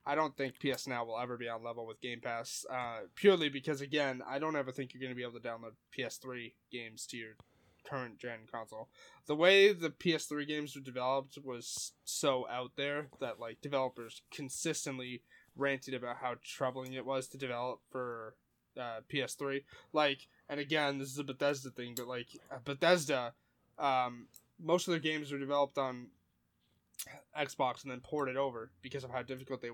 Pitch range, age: 125-150 Hz, 10-29